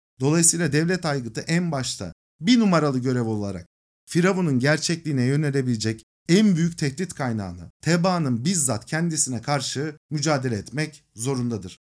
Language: Turkish